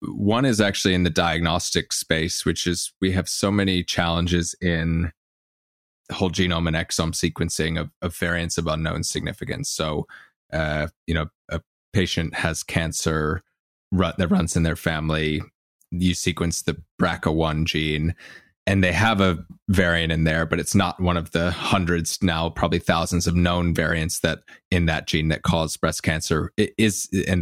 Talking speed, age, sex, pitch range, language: 160 wpm, 20-39, male, 80-95 Hz, English